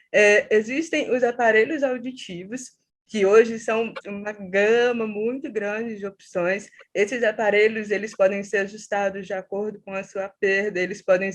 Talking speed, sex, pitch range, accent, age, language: 150 wpm, female, 195-230 Hz, Brazilian, 20-39, Portuguese